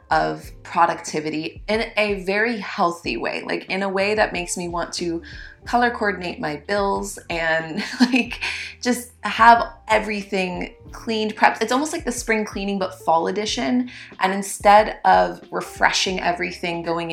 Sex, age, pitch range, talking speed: female, 30-49, 170-210 Hz, 145 wpm